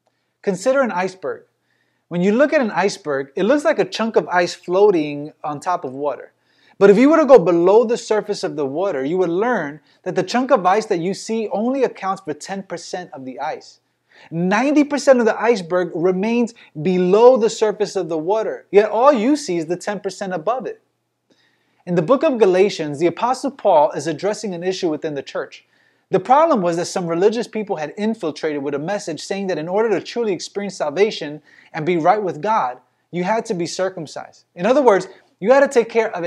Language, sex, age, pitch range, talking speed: English, male, 20-39, 160-220 Hz, 205 wpm